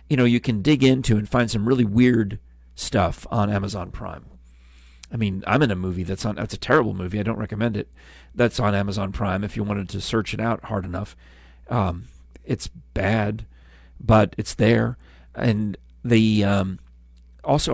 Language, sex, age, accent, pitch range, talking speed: English, male, 40-59, American, 70-115 Hz, 185 wpm